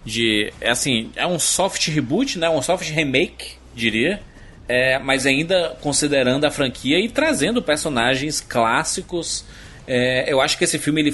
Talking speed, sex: 150 wpm, male